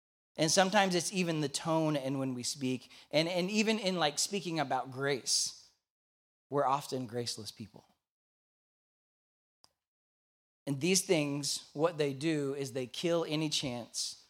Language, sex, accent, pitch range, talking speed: English, male, American, 120-160 Hz, 140 wpm